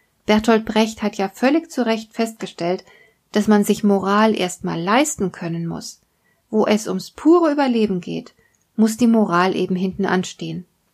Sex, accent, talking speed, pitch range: female, German, 155 wpm, 190-225 Hz